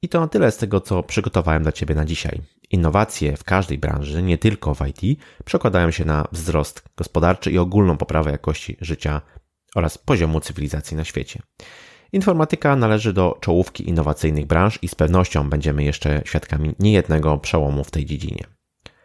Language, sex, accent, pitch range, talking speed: Polish, male, native, 75-100 Hz, 165 wpm